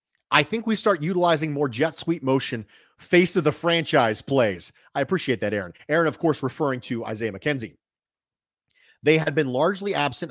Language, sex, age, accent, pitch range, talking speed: English, male, 30-49, American, 120-160 Hz, 175 wpm